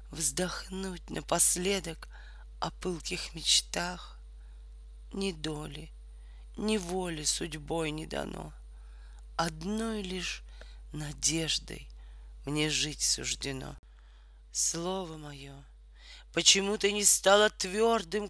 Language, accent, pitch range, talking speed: Russian, native, 155-190 Hz, 80 wpm